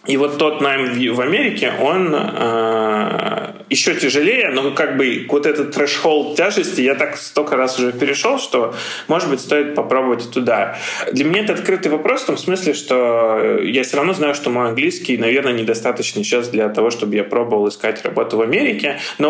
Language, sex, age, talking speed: Russian, male, 20-39, 180 wpm